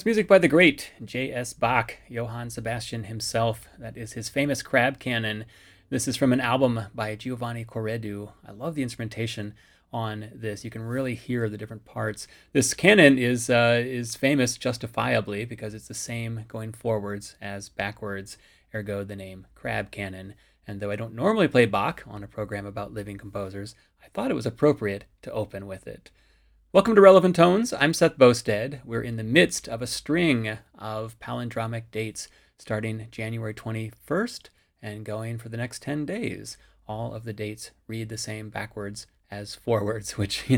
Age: 30-49